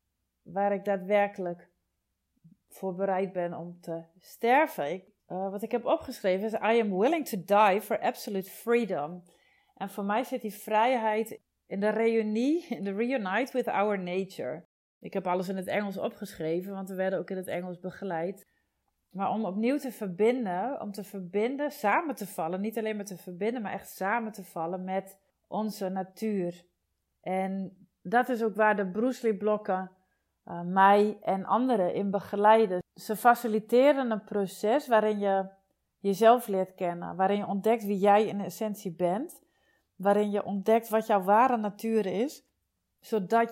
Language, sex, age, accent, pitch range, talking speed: Dutch, female, 40-59, Dutch, 190-225 Hz, 165 wpm